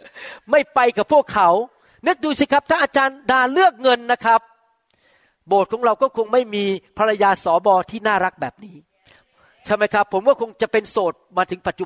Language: Thai